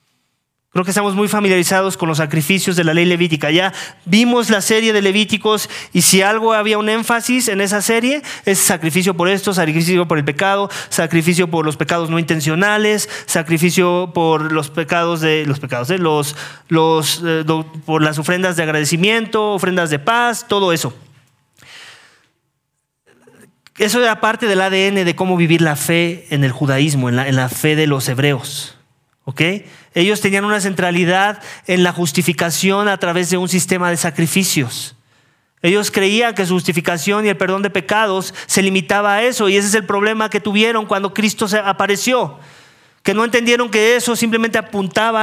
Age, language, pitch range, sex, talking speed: 30-49, English, 160-210 Hz, male, 170 wpm